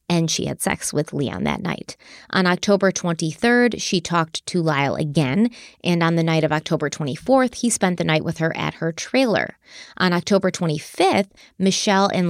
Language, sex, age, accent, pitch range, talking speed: English, female, 20-39, American, 160-195 Hz, 180 wpm